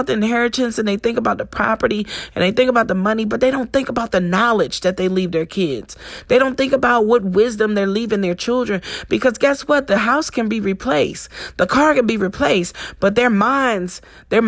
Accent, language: American, English